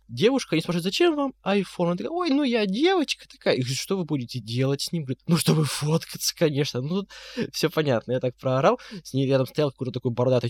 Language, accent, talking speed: Russian, native, 230 wpm